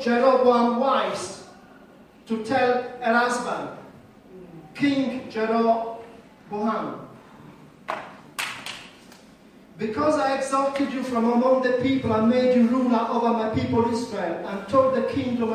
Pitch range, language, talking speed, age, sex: 210-245 Hz, English, 110 wpm, 40-59, male